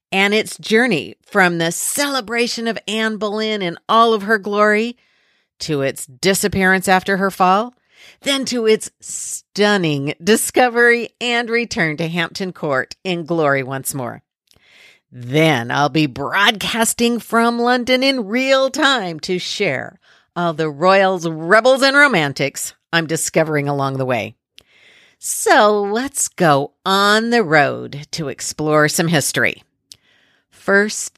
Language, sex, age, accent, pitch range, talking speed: English, female, 50-69, American, 155-230 Hz, 130 wpm